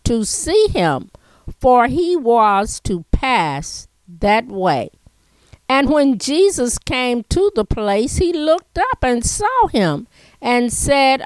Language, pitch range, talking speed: English, 200-265 Hz, 135 wpm